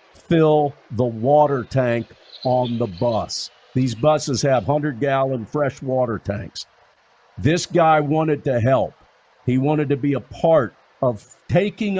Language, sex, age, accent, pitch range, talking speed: English, male, 50-69, American, 120-150 Hz, 135 wpm